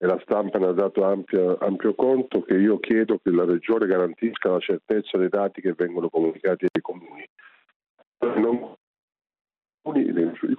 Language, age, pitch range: Italian, 50-69, 100-125 Hz